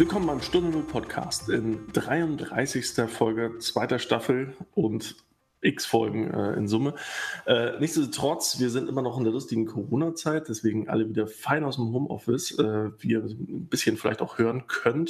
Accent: German